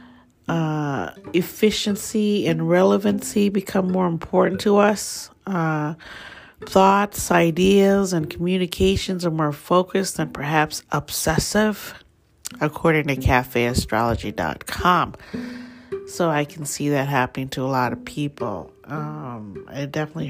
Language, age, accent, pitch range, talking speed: English, 40-59, American, 140-195 Hz, 110 wpm